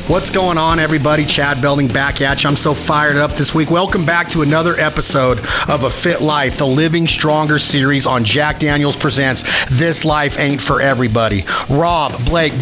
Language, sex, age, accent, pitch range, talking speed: English, male, 40-59, American, 140-170 Hz, 185 wpm